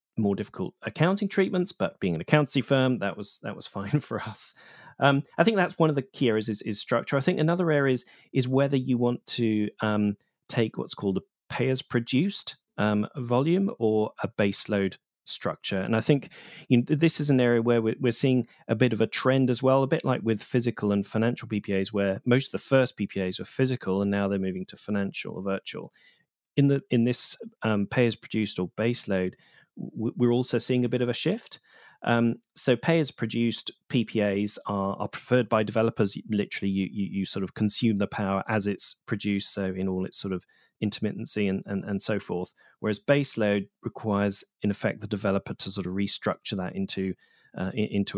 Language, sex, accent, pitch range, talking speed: English, male, British, 100-135 Hz, 195 wpm